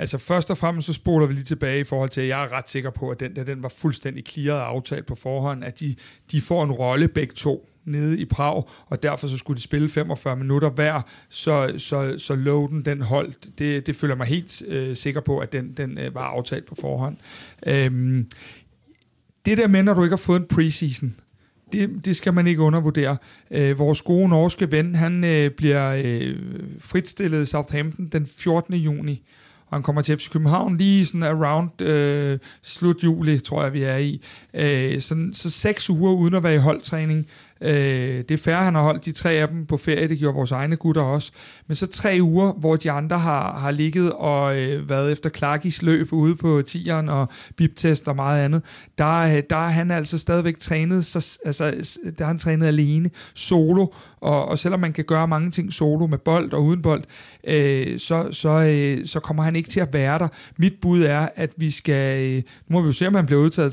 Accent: native